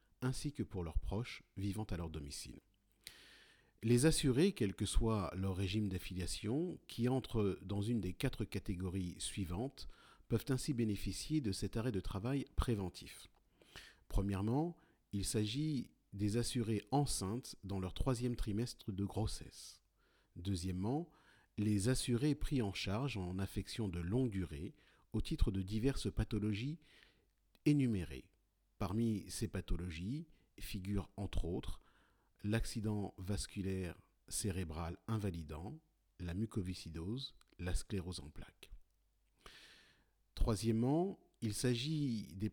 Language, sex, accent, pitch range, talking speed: French, male, French, 95-120 Hz, 115 wpm